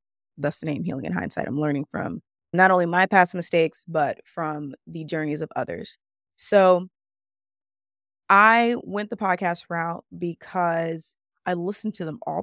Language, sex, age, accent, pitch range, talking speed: English, female, 20-39, American, 150-185 Hz, 155 wpm